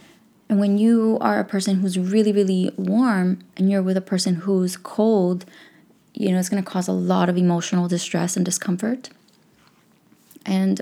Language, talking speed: English, 165 wpm